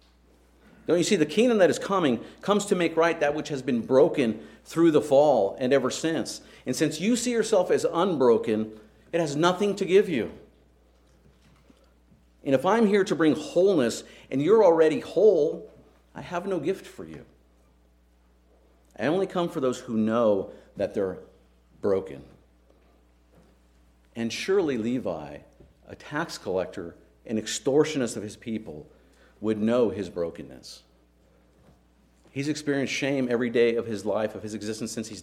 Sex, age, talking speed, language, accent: male, 50-69, 155 wpm, English, American